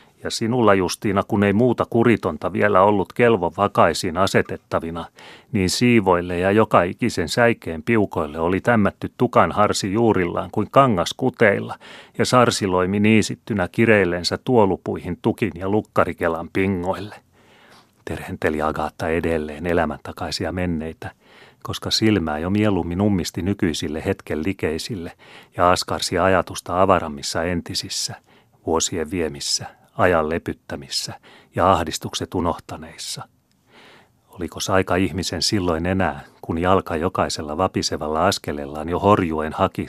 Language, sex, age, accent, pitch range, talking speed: Finnish, male, 30-49, native, 85-105 Hz, 110 wpm